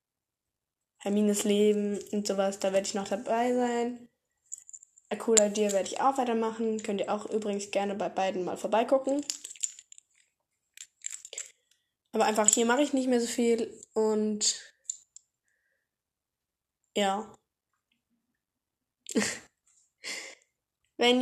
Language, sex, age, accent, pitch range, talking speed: German, female, 10-29, German, 200-255 Hz, 105 wpm